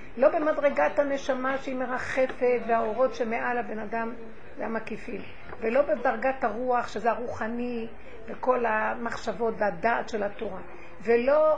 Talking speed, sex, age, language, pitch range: 115 wpm, female, 50-69, Hebrew, 225-275 Hz